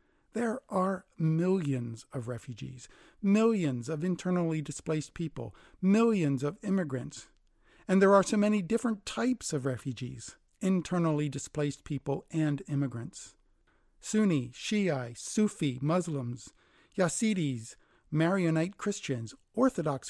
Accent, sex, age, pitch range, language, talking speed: American, male, 50-69, 135-185 Hz, English, 105 wpm